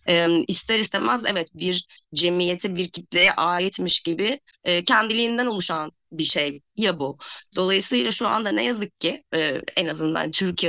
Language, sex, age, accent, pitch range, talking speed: Turkish, female, 20-39, native, 165-200 Hz, 135 wpm